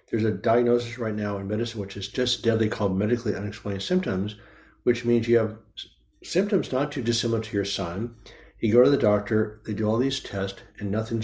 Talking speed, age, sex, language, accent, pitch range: 205 wpm, 60-79, male, English, American, 105-125 Hz